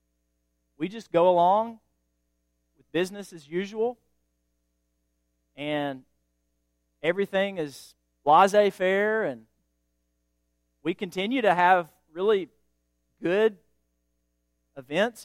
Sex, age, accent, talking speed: male, 40-59, American, 85 wpm